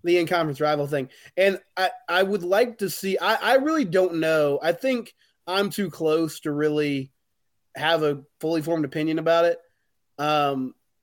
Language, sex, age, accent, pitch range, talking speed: English, male, 20-39, American, 150-185 Hz, 175 wpm